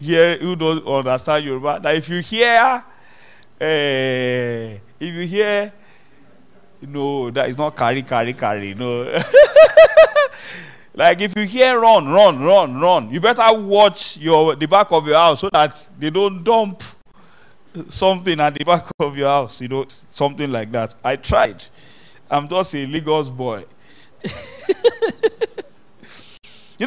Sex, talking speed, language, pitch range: male, 145 wpm, English, 135-210 Hz